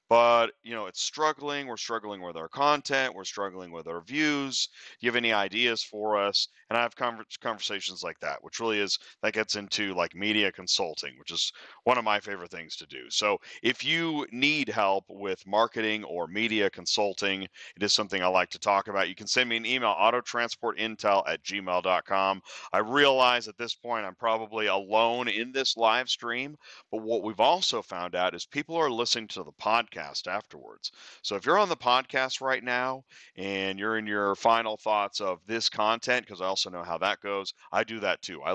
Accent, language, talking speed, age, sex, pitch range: American, English, 200 wpm, 30-49, male, 95-120 Hz